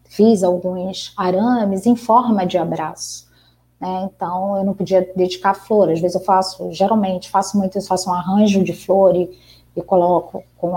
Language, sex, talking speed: Portuguese, female, 180 wpm